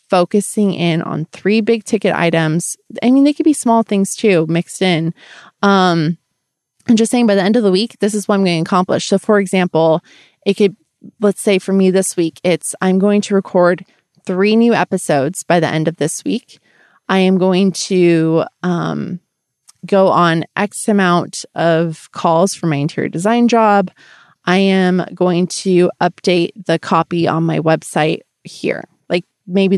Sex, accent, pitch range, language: female, American, 170-210 Hz, English